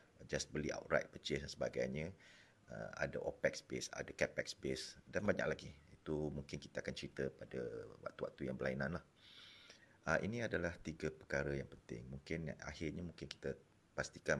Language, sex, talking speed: Malay, male, 160 wpm